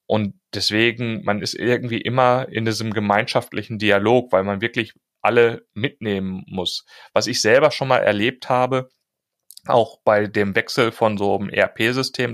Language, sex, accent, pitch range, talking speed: German, male, German, 110-135 Hz, 150 wpm